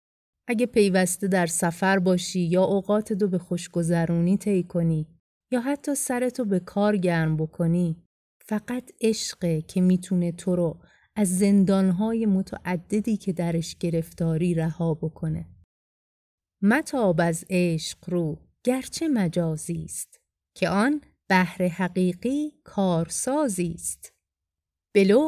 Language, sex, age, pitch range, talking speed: Persian, female, 30-49, 170-215 Hz, 105 wpm